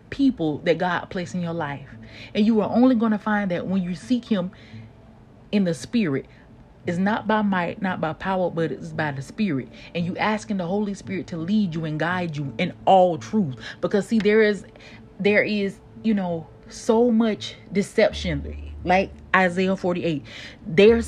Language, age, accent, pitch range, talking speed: English, 30-49, American, 165-220 Hz, 180 wpm